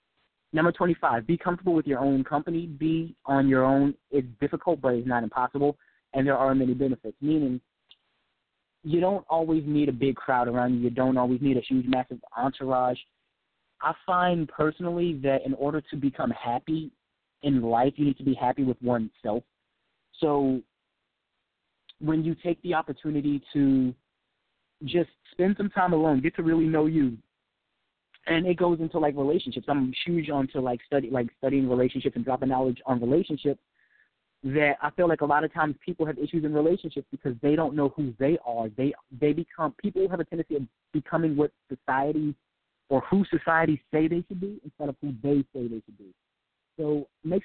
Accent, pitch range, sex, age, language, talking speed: American, 130-160 Hz, male, 30-49, English, 180 wpm